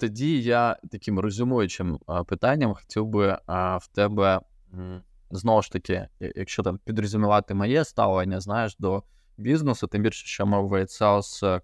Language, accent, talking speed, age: Ukrainian, native, 130 wpm, 20-39